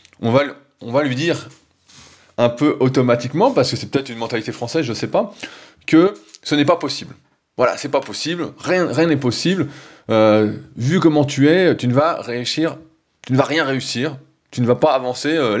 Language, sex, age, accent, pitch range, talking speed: French, male, 20-39, French, 120-155 Hz, 205 wpm